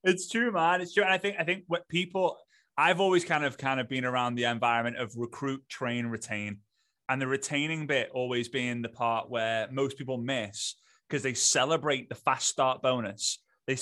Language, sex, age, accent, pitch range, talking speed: English, male, 20-39, British, 120-160 Hz, 195 wpm